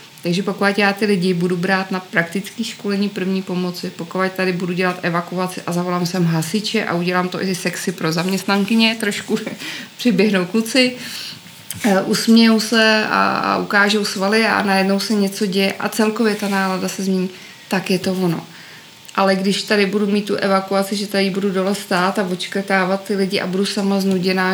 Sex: female